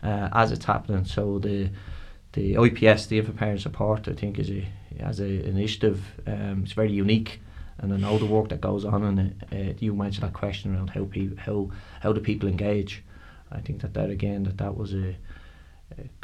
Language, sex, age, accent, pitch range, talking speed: English, male, 20-39, Irish, 95-110 Hz, 200 wpm